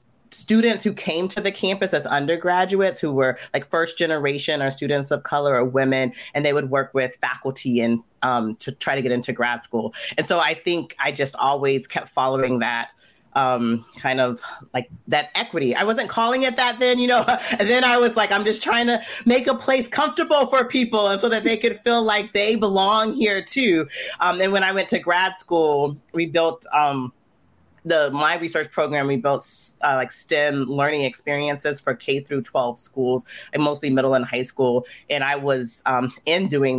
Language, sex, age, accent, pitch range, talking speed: English, female, 30-49, American, 125-175 Hz, 200 wpm